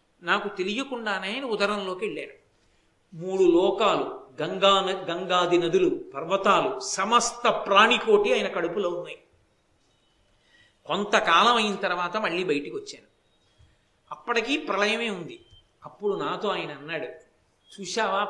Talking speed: 95 wpm